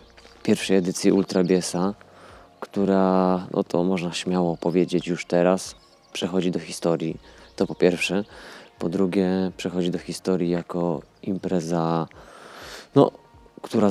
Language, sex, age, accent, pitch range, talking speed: Polish, male, 20-39, native, 85-95 Hz, 110 wpm